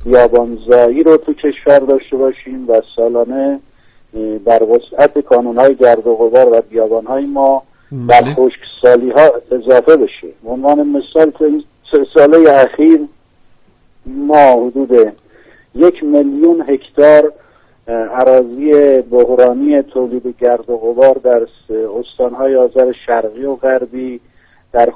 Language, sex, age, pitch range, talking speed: Persian, male, 50-69, 120-140 Hz, 115 wpm